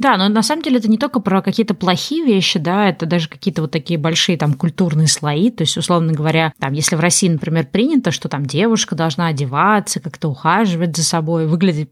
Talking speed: 210 wpm